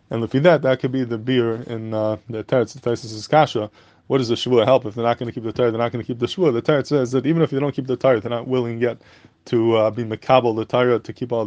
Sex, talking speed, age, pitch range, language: male, 310 wpm, 20-39, 115-130 Hz, English